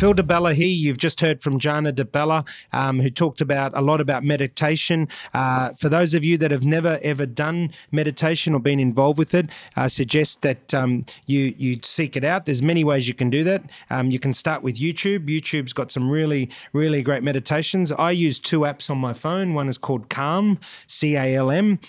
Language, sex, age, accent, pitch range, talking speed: English, male, 30-49, Australian, 125-155 Hz, 205 wpm